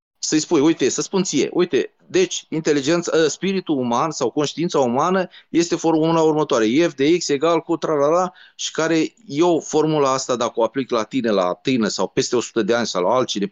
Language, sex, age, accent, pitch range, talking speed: Romanian, male, 30-49, native, 120-165 Hz, 190 wpm